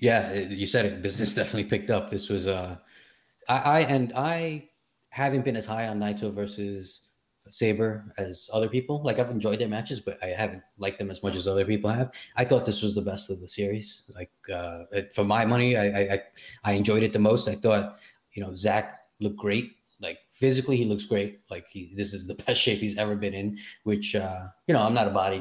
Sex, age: male, 30-49